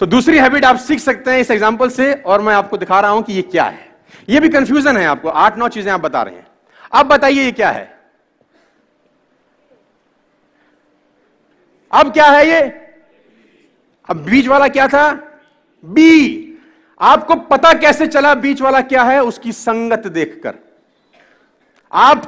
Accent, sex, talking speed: native, male, 160 wpm